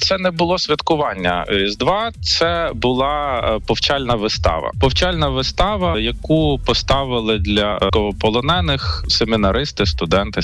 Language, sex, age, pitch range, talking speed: Ukrainian, male, 20-39, 95-120 Hz, 105 wpm